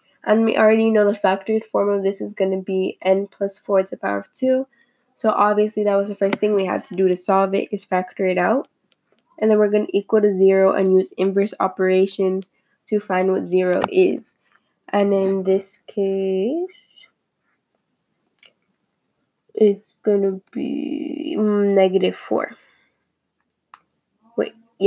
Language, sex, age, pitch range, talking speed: English, female, 10-29, 195-225 Hz, 160 wpm